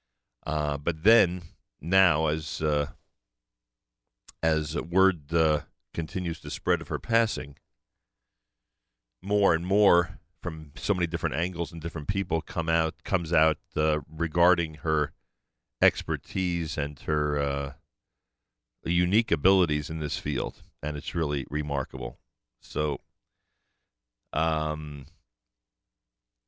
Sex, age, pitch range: male, 40-59, 75-85 Hz